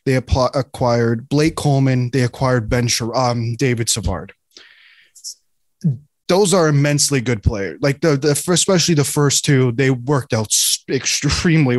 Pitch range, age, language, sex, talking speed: 120-150 Hz, 20-39, English, male, 135 wpm